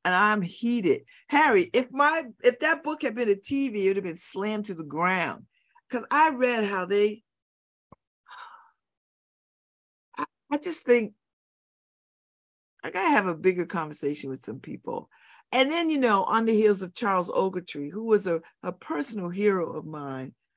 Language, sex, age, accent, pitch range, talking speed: English, female, 50-69, American, 180-255 Hz, 165 wpm